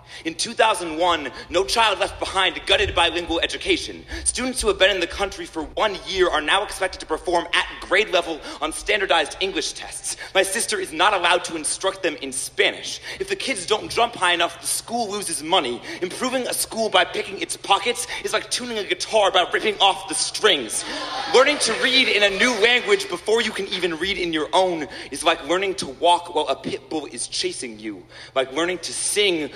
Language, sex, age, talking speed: English, male, 30-49, 205 wpm